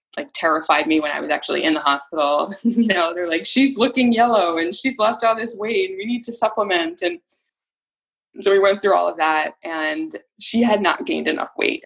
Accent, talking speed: American, 220 wpm